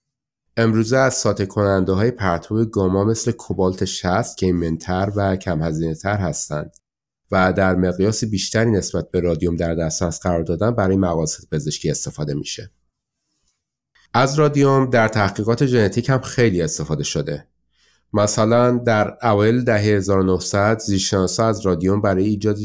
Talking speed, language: 130 wpm, Persian